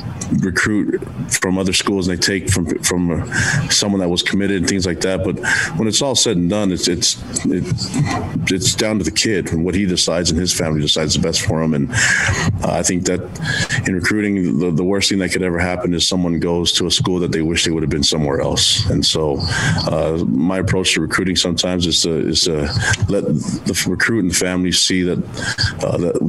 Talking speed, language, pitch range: 215 wpm, English, 80-95 Hz